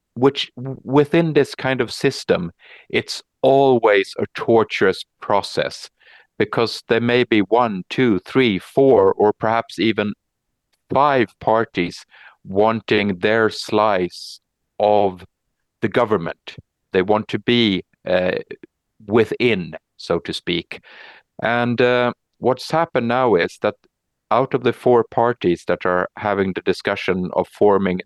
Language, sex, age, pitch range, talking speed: English, male, 50-69, 100-125 Hz, 125 wpm